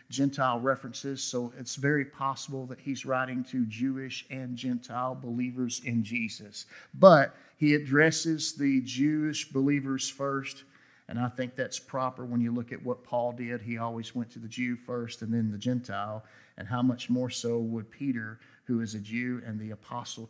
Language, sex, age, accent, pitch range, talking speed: English, male, 50-69, American, 120-140 Hz, 175 wpm